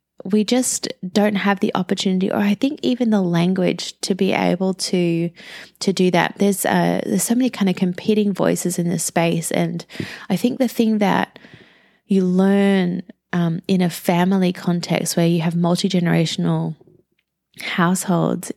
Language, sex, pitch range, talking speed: English, female, 175-210 Hz, 160 wpm